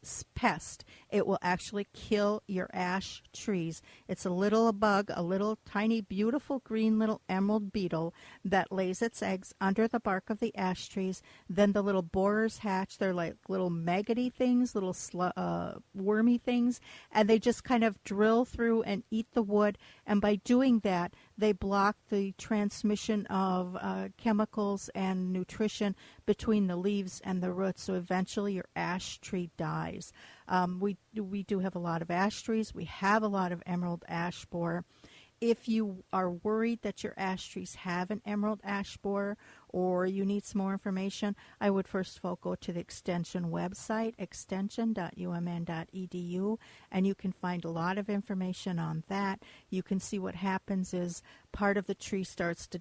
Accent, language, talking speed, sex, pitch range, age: American, English, 170 wpm, female, 180-210 Hz, 50-69